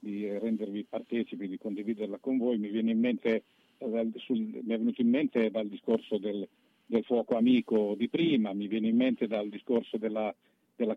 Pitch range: 105-120 Hz